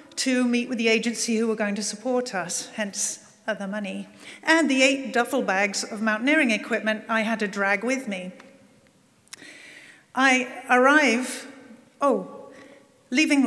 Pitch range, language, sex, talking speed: 210-260 Hz, English, female, 145 wpm